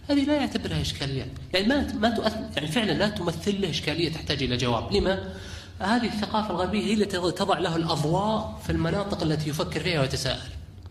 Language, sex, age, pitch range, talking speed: Arabic, male, 30-49, 125-185 Hz, 180 wpm